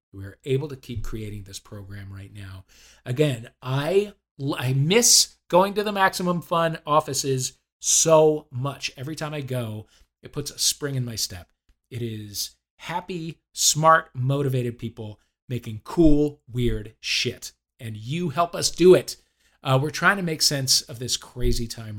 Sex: male